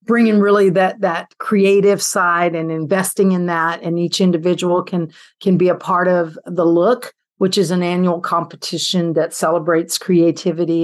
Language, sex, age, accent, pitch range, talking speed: English, female, 50-69, American, 170-200 Hz, 160 wpm